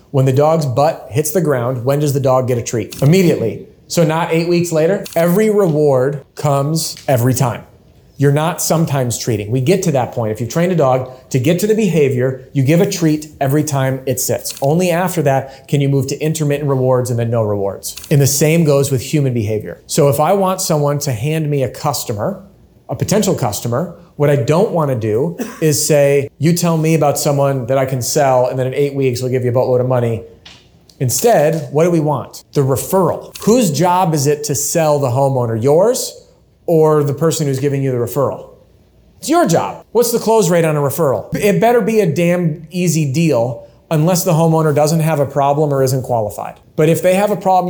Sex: male